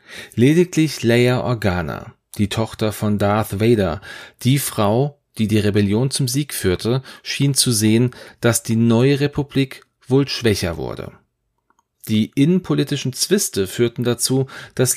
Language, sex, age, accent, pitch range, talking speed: German, male, 40-59, German, 105-130 Hz, 130 wpm